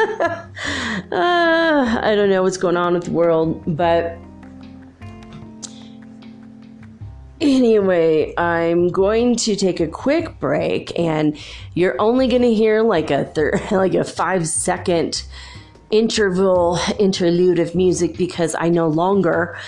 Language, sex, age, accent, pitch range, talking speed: English, female, 30-49, American, 155-205 Hz, 120 wpm